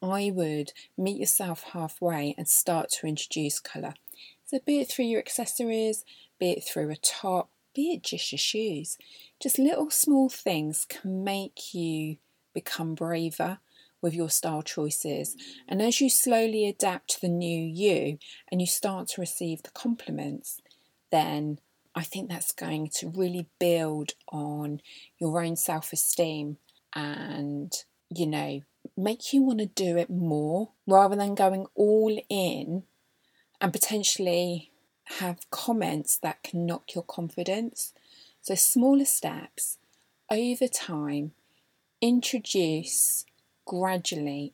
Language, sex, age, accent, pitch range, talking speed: English, female, 30-49, British, 155-210 Hz, 130 wpm